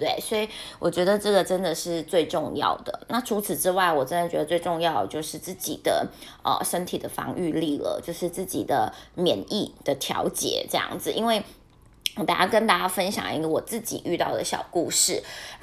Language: Chinese